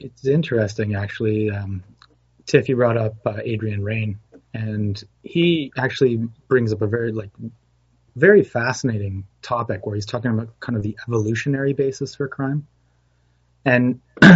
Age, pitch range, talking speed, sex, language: 30-49, 105-125 Hz, 140 wpm, male, English